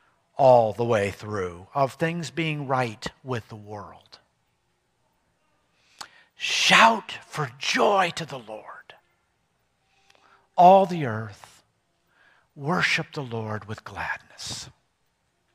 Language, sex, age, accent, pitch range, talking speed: English, male, 50-69, American, 110-150 Hz, 95 wpm